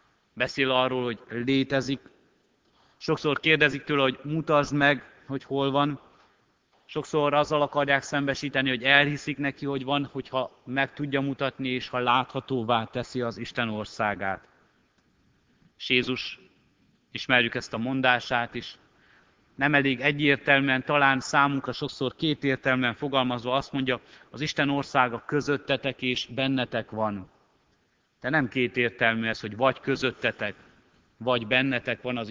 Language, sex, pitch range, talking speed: Hungarian, male, 120-140 Hz, 125 wpm